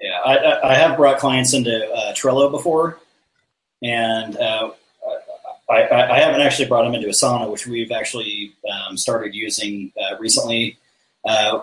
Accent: American